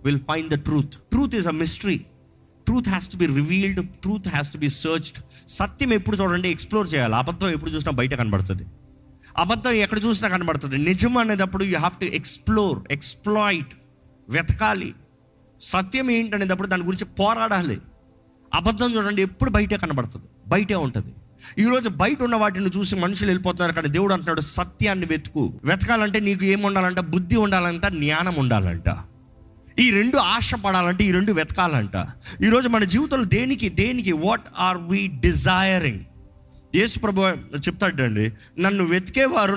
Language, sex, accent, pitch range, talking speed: Telugu, male, native, 150-205 Hz, 150 wpm